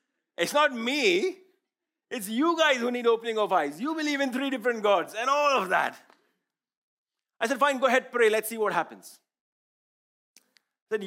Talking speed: 175 wpm